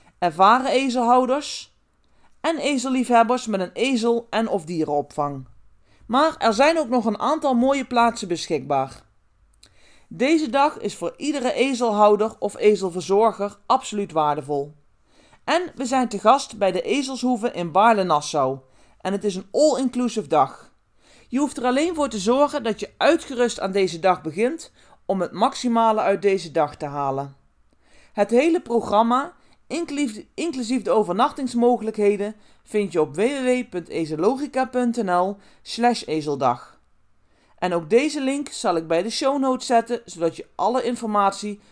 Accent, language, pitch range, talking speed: Dutch, Dutch, 185-260 Hz, 135 wpm